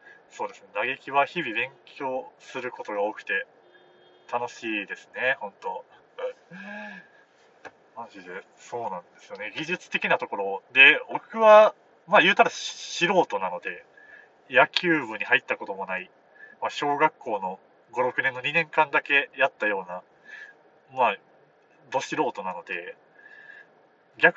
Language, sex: Japanese, male